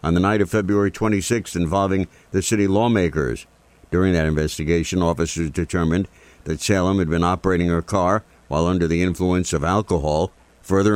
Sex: male